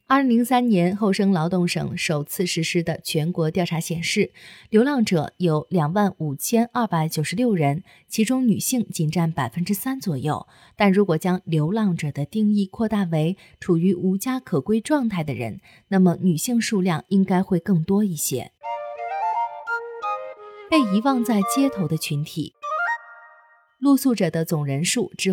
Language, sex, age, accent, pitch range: Chinese, female, 30-49, native, 165-225 Hz